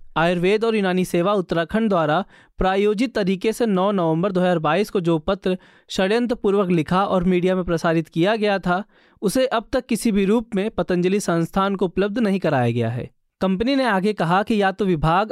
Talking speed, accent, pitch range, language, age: 185 wpm, native, 170-215 Hz, Hindi, 20-39